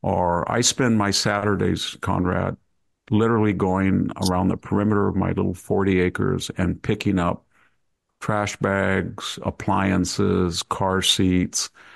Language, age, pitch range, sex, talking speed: English, 50-69, 90-105 Hz, male, 120 wpm